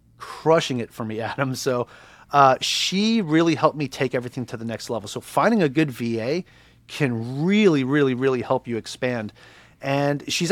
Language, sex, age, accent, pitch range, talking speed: English, male, 30-49, American, 125-155 Hz, 175 wpm